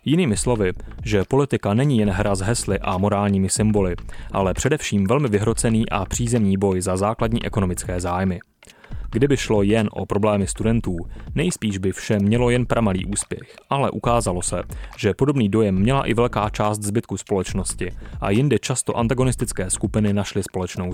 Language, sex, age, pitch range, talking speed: Czech, male, 30-49, 95-115 Hz, 160 wpm